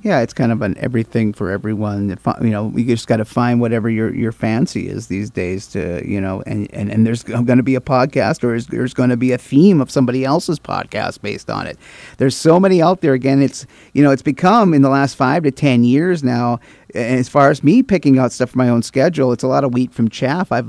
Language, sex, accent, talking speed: English, male, American, 250 wpm